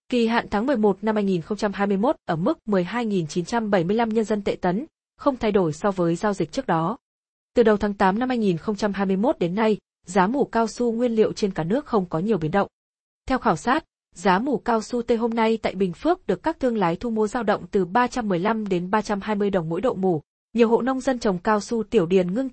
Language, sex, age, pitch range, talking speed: Vietnamese, female, 20-39, 190-235 Hz, 220 wpm